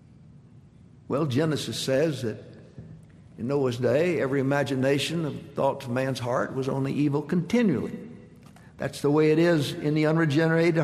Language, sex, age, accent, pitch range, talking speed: English, male, 60-79, American, 135-170 Hz, 145 wpm